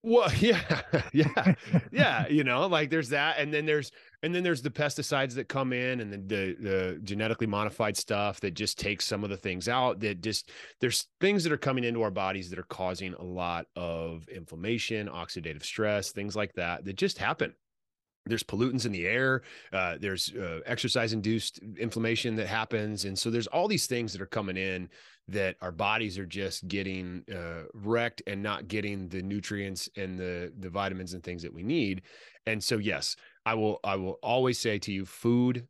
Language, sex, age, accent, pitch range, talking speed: English, male, 30-49, American, 95-115 Hz, 195 wpm